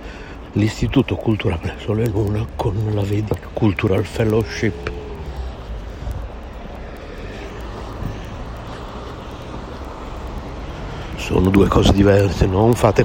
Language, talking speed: Italian, 75 wpm